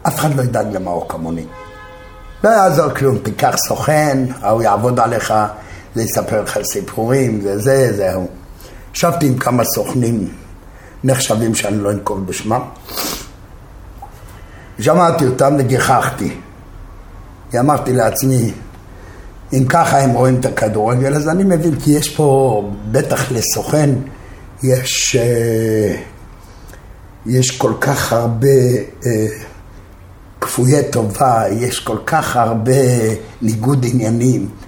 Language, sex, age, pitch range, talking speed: Hebrew, male, 60-79, 100-140 Hz, 110 wpm